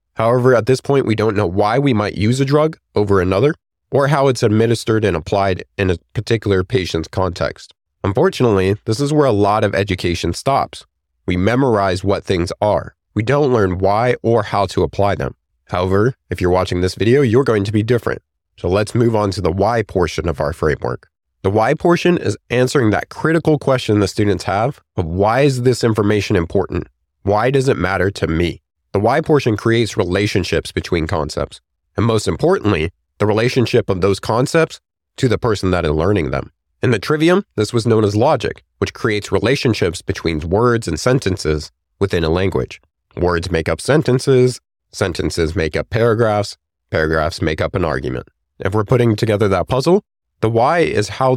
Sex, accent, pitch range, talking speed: male, American, 90-120 Hz, 185 wpm